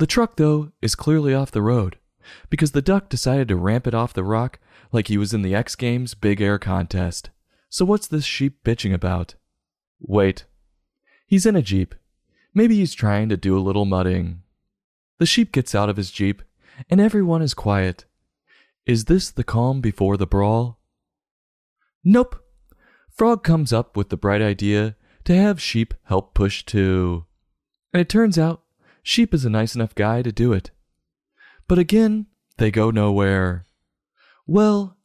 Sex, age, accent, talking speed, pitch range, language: male, 30-49, American, 170 wpm, 100-155 Hz, English